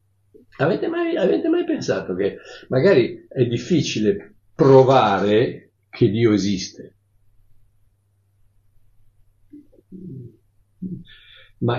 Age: 60-79